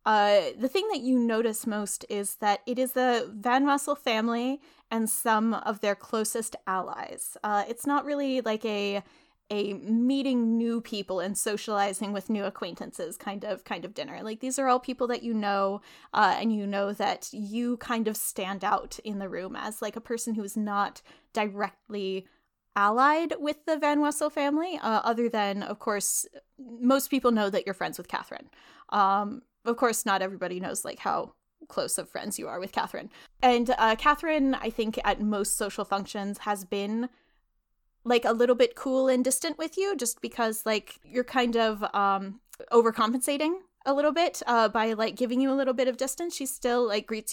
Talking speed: 190 wpm